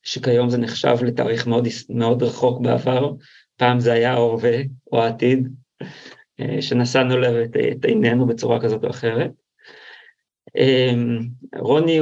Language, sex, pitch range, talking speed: Hebrew, male, 120-150 Hz, 110 wpm